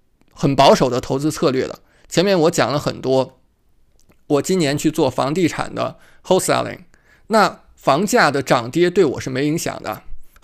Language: Chinese